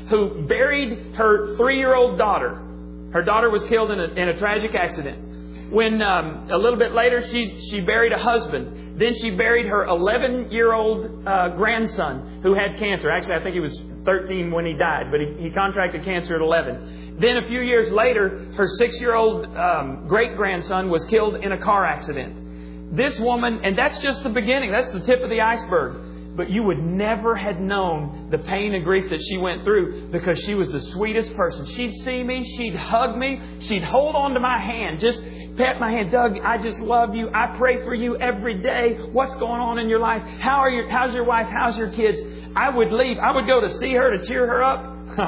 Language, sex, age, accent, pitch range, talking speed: English, male, 40-59, American, 165-235 Hz, 205 wpm